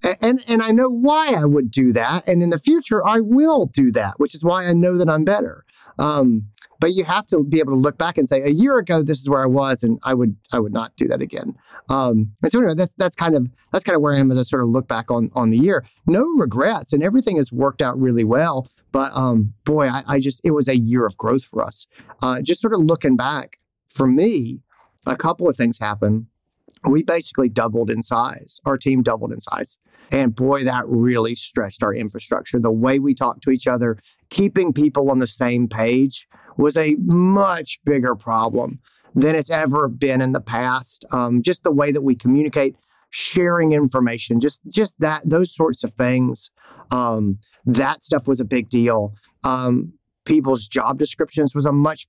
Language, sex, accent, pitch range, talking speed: English, male, American, 125-160 Hz, 215 wpm